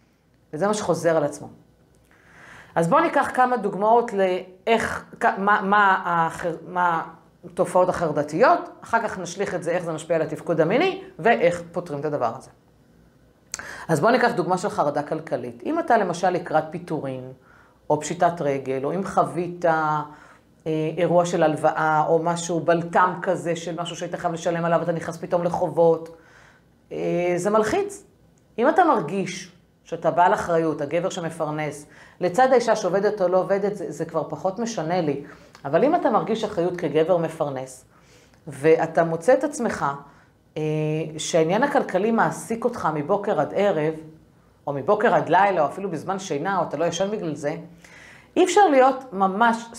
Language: Hebrew